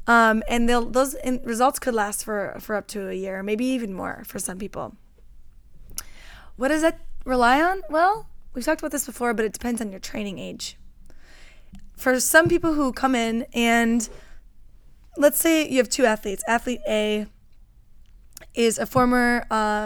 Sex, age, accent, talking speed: female, 20-39, American, 170 wpm